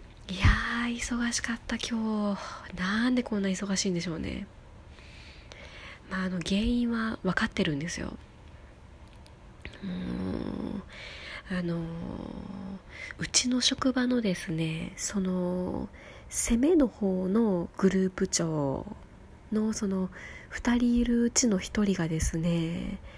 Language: Japanese